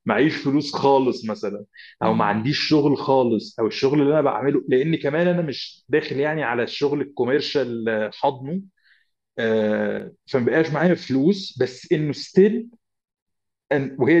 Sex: male